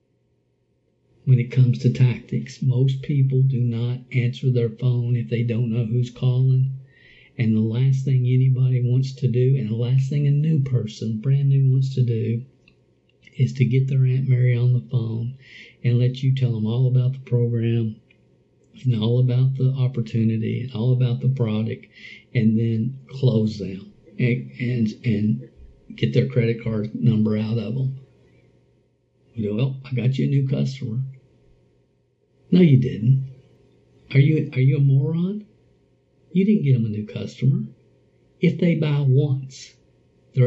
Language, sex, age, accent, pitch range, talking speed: English, male, 50-69, American, 120-135 Hz, 160 wpm